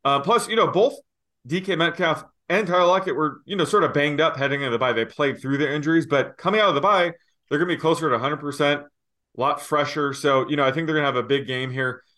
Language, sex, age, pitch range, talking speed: English, male, 20-39, 120-150 Hz, 265 wpm